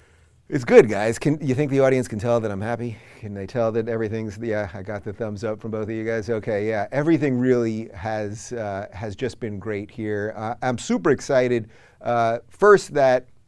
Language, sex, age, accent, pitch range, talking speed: English, male, 30-49, American, 100-125 Hz, 210 wpm